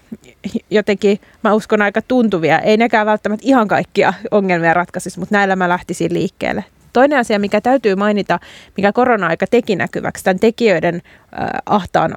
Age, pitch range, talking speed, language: 30-49, 175-210 Hz, 145 wpm, Finnish